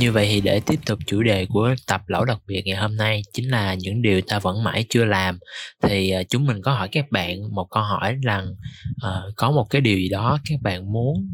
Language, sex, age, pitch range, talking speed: Vietnamese, male, 20-39, 95-120 Hz, 245 wpm